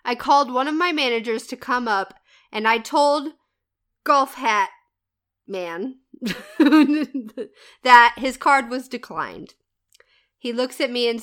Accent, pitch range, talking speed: American, 210-290 Hz, 135 wpm